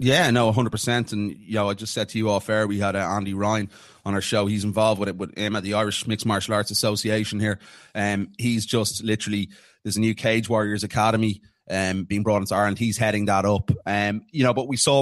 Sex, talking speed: male, 240 wpm